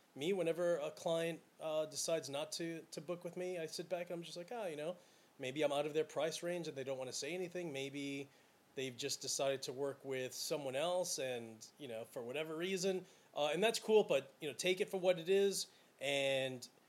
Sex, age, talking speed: male, 30-49, 235 wpm